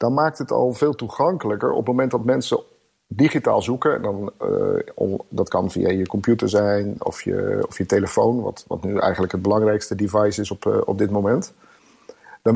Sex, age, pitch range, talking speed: male, 50-69, 105-130 Hz, 180 wpm